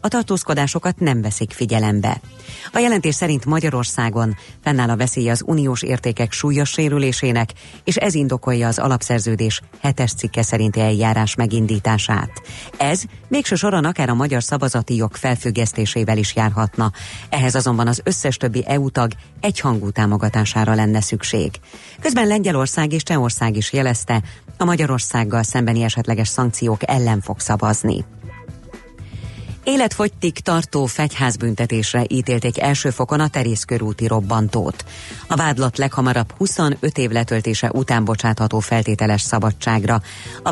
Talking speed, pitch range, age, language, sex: 125 wpm, 110-145 Hz, 30-49, Hungarian, female